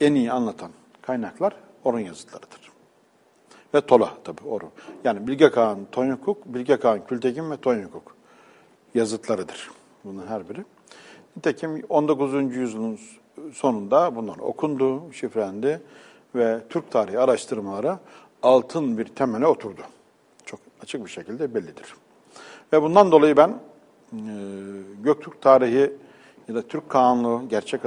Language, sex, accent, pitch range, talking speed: English, male, Turkish, 120-150 Hz, 115 wpm